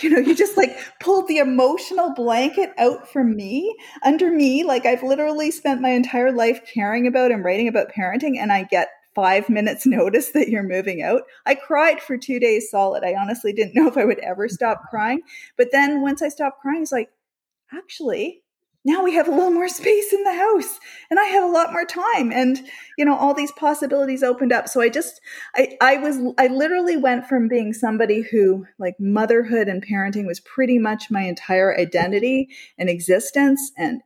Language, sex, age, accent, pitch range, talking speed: English, female, 40-59, American, 215-310 Hz, 200 wpm